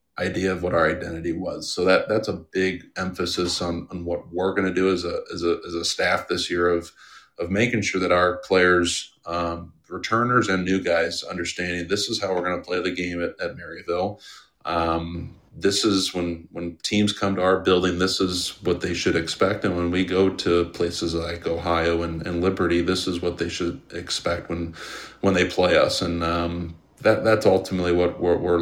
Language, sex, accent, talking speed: English, male, American, 205 wpm